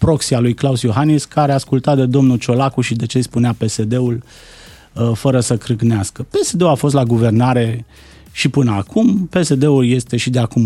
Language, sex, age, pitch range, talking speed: Romanian, male, 30-49, 115-150 Hz, 175 wpm